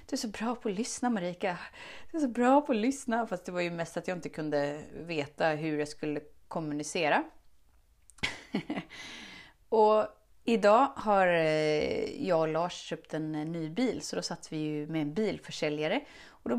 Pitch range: 155-235 Hz